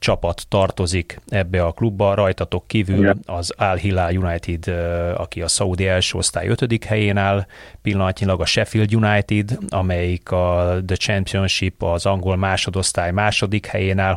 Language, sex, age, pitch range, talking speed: Hungarian, male, 30-49, 95-105 Hz, 140 wpm